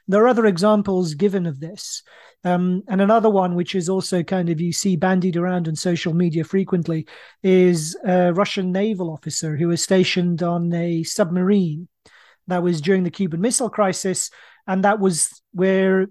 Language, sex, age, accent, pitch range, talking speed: English, male, 40-59, British, 170-195 Hz, 170 wpm